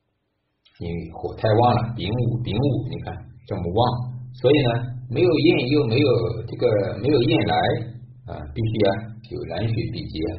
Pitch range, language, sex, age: 105-125 Hz, Chinese, male, 50-69